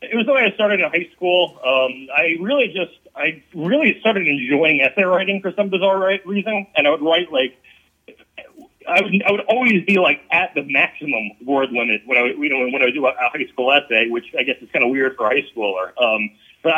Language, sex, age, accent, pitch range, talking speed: English, male, 30-49, American, 120-170 Hz, 245 wpm